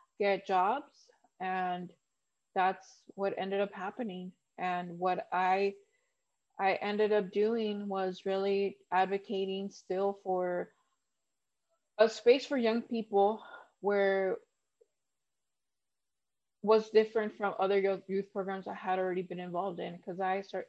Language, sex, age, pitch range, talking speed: English, female, 20-39, 185-215 Hz, 120 wpm